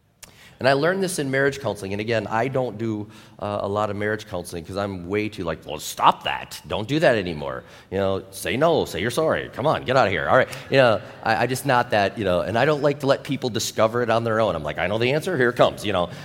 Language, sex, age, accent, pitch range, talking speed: English, male, 30-49, American, 95-130 Hz, 285 wpm